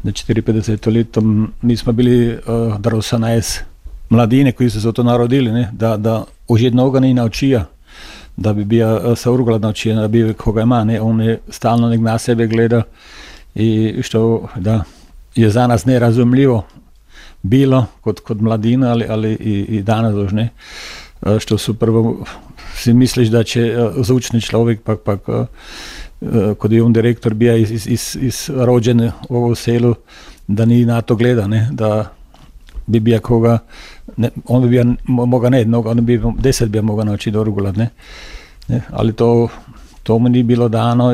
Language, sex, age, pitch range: Croatian, male, 50-69, 115-125 Hz